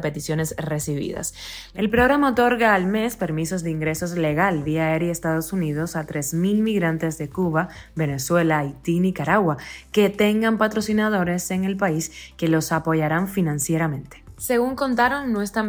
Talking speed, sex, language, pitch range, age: 145 wpm, female, Spanish, 160-205 Hz, 20-39